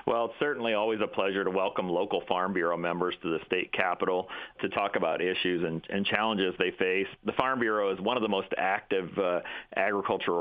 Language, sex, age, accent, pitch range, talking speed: English, male, 40-59, American, 85-100 Hz, 210 wpm